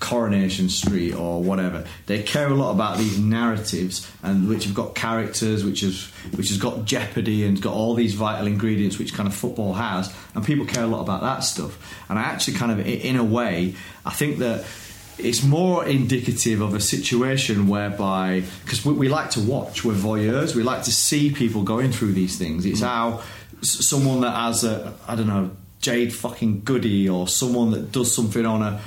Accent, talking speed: British, 195 wpm